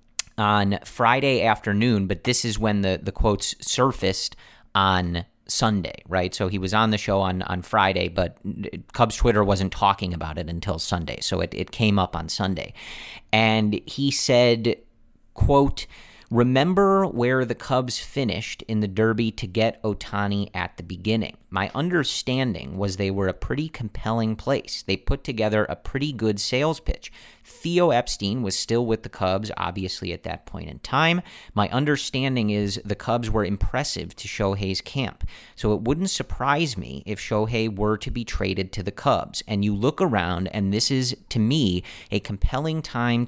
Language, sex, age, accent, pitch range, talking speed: English, male, 40-59, American, 95-120 Hz, 170 wpm